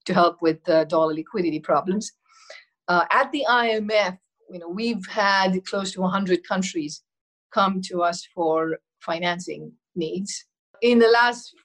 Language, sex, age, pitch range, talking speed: English, female, 50-69, 175-225 Hz, 145 wpm